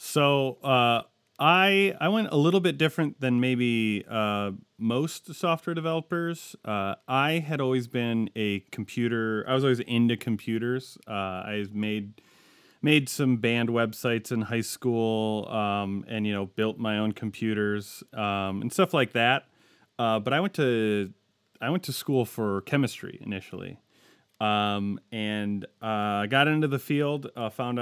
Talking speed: 155 wpm